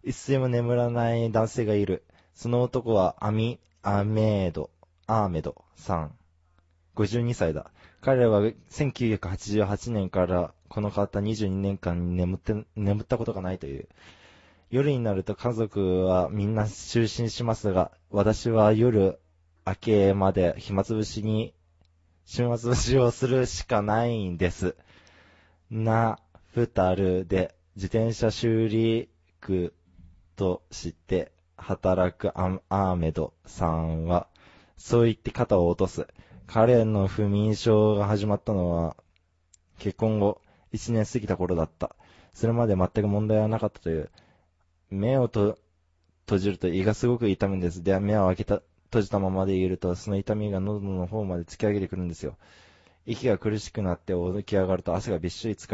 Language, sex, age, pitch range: Japanese, male, 20-39, 85-110 Hz